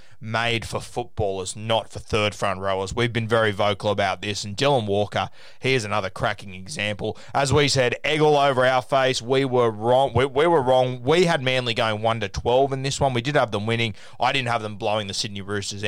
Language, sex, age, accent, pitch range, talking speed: English, male, 20-39, Australian, 105-130 Hz, 220 wpm